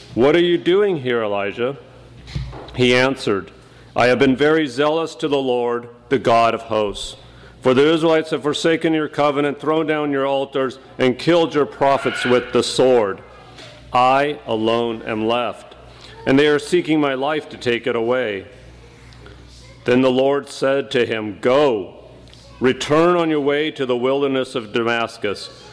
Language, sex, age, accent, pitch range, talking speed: English, male, 40-59, American, 120-150 Hz, 160 wpm